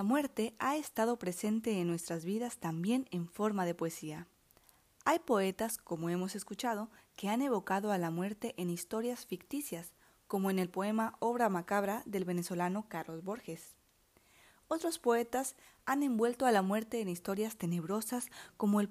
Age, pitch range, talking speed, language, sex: 30-49, 180-230 Hz, 155 wpm, Spanish, female